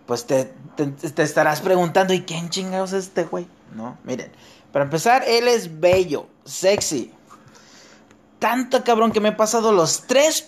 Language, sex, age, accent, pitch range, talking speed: Spanish, male, 30-49, Mexican, 145-230 Hz, 160 wpm